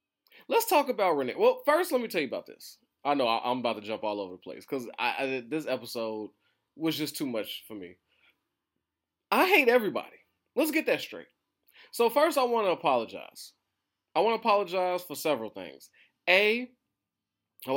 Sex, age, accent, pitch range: male, 20-39, American, 130-215 Hz